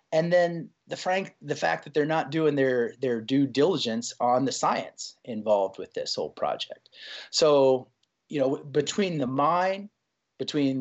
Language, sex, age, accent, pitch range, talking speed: English, male, 30-49, American, 130-195 Hz, 160 wpm